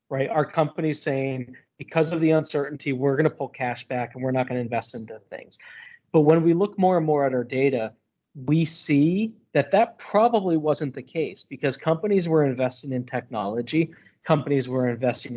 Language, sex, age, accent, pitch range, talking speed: English, male, 40-59, American, 130-160 Hz, 190 wpm